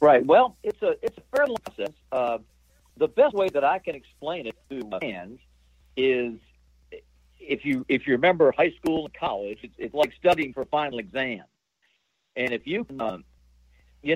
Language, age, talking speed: English, 60-79, 185 wpm